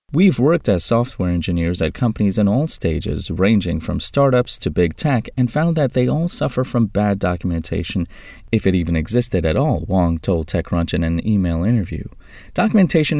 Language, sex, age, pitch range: English, male, 30-49, 85-115 Hz